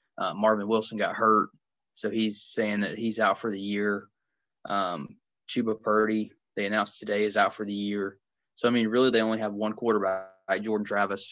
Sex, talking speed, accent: male, 190 wpm, American